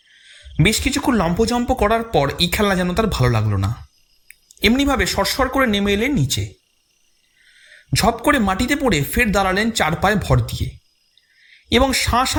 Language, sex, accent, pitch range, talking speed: Bengali, male, native, 150-245 Hz, 145 wpm